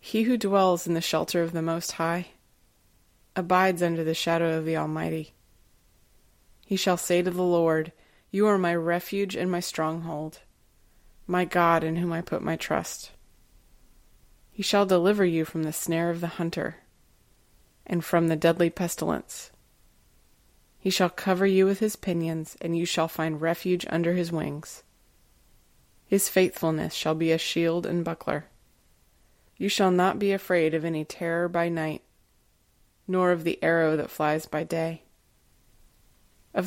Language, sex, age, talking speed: English, female, 20-39, 155 wpm